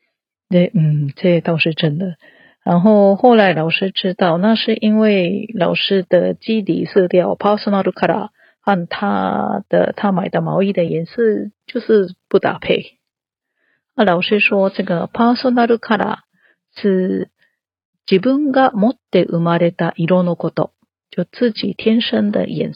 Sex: female